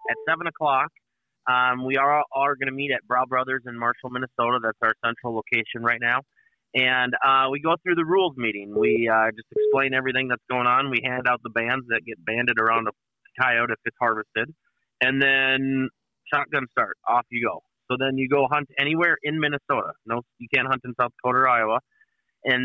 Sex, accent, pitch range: male, American, 120-140 Hz